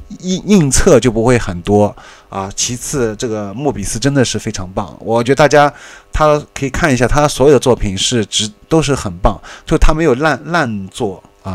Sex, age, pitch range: male, 20-39, 105-140 Hz